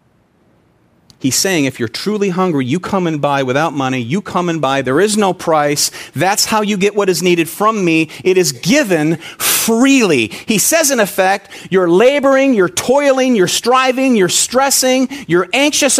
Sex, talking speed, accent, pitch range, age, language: male, 175 wpm, American, 140-195 Hz, 40-59, English